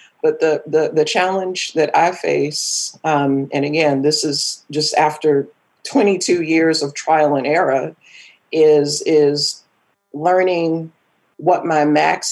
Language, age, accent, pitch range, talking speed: English, 40-59, American, 150-165 Hz, 130 wpm